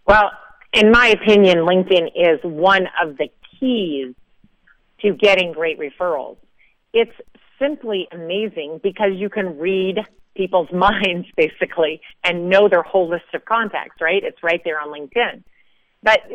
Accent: American